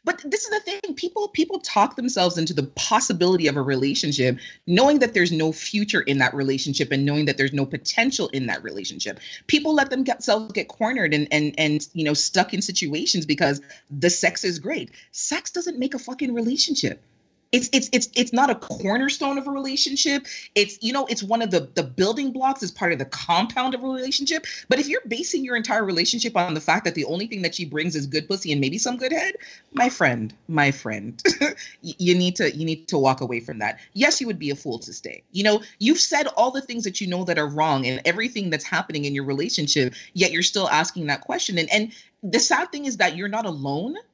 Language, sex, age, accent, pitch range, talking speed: English, female, 30-49, American, 165-255 Hz, 225 wpm